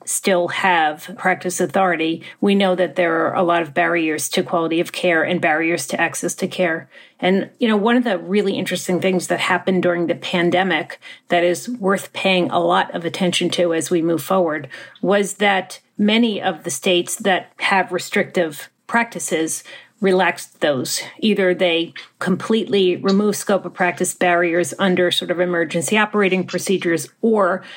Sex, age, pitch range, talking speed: female, 40-59, 170-190 Hz, 165 wpm